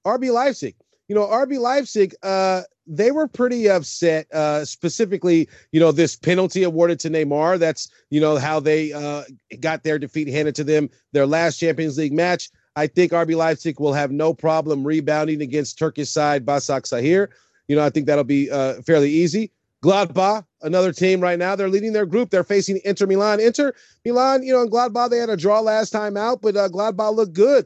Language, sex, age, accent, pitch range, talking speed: English, male, 30-49, American, 155-205 Hz, 195 wpm